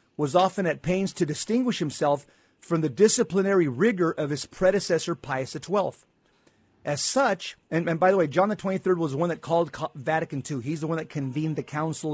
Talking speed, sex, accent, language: 200 wpm, male, American, English